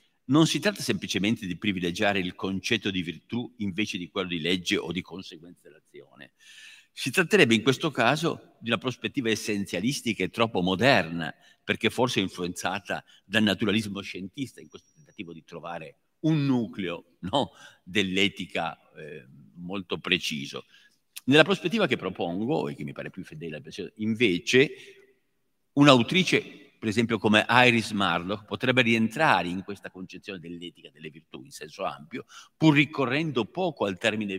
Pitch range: 100-135 Hz